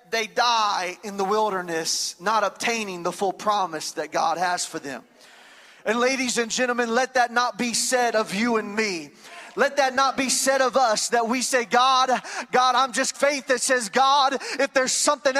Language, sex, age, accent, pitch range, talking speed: English, male, 30-49, American, 210-260 Hz, 190 wpm